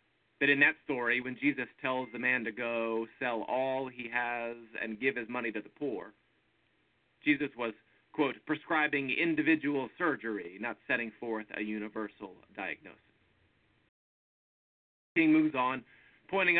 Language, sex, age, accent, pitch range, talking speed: English, male, 40-59, American, 120-155 Hz, 135 wpm